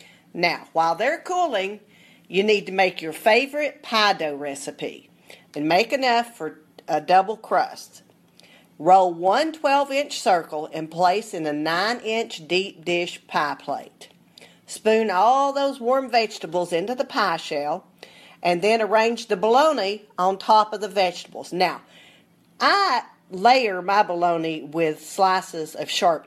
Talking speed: 140 wpm